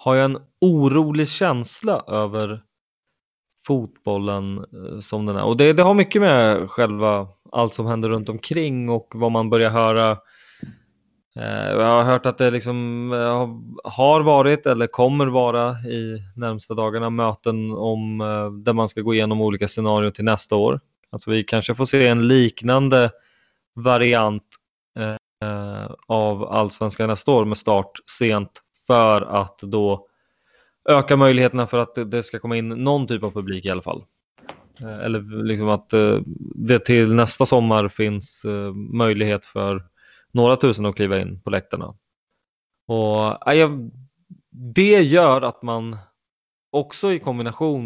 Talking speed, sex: 140 wpm, male